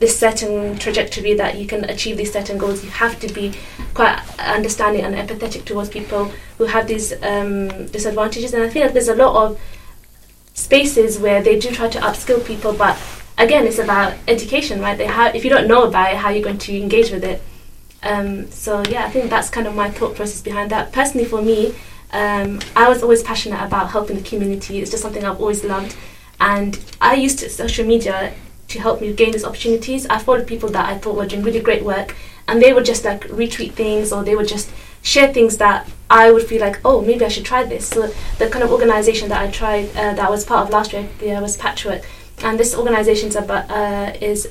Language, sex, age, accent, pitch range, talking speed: English, female, 20-39, British, 205-230 Hz, 225 wpm